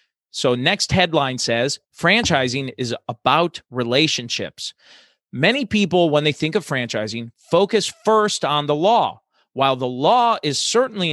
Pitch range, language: 125-175 Hz, English